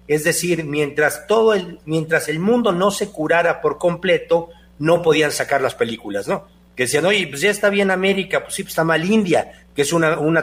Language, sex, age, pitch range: Spanish, male, 50-69, 150-190 Hz